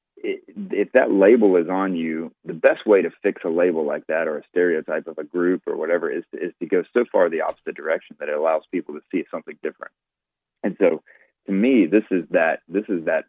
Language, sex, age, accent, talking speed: English, male, 30-49, American, 230 wpm